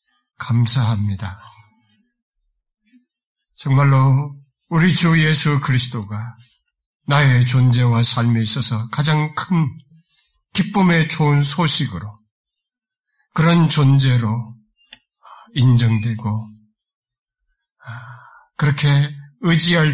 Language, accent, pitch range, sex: Korean, native, 115-155 Hz, male